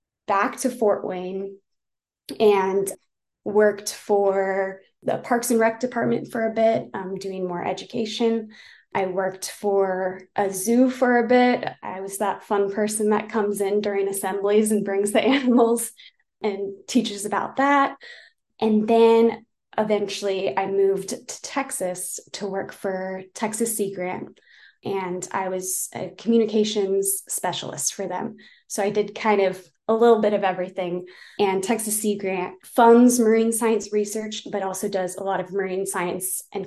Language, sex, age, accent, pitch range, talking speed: English, female, 20-39, American, 190-220 Hz, 150 wpm